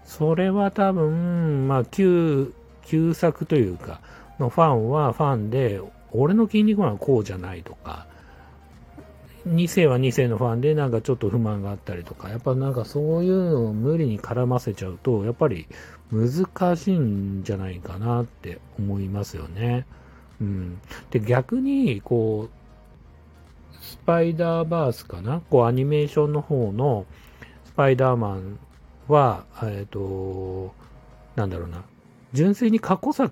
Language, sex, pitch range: Japanese, male, 105-165 Hz